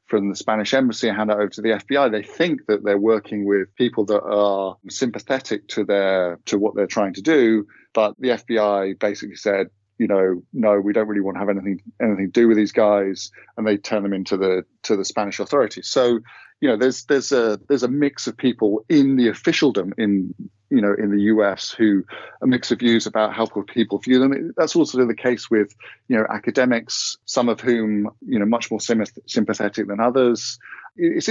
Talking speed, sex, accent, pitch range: 205 wpm, male, British, 105-130 Hz